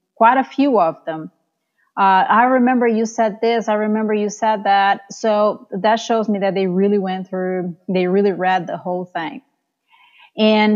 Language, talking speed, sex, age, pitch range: English, 180 wpm, female, 30-49, 195-225 Hz